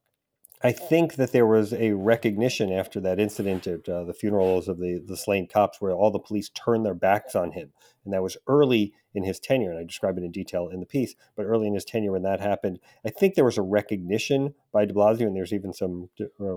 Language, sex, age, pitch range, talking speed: English, male, 40-59, 95-115 Hz, 240 wpm